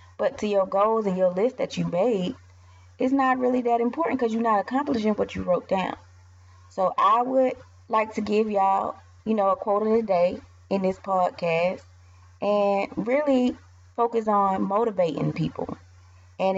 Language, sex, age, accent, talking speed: English, female, 20-39, American, 170 wpm